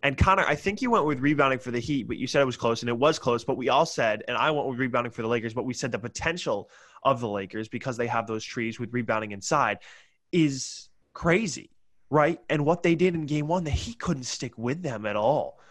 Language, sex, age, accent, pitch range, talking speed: English, male, 20-39, American, 140-195 Hz, 255 wpm